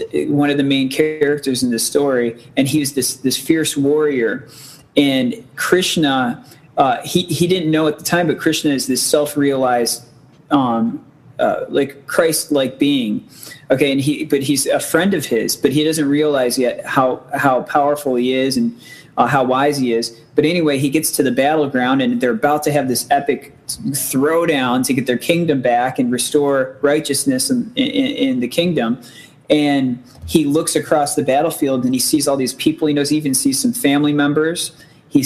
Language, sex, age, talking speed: English, male, 30-49, 185 wpm